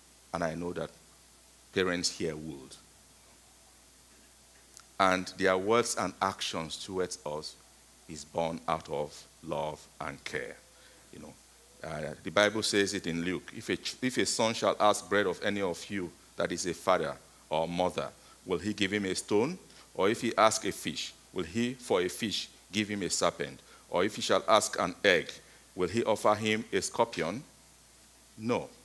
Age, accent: 50-69, Nigerian